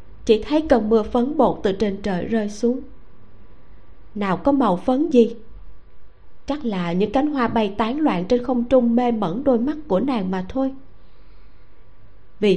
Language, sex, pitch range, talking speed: Vietnamese, female, 190-250 Hz, 170 wpm